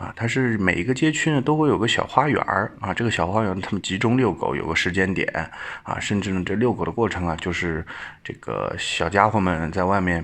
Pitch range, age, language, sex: 90-135 Hz, 20-39, Chinese, male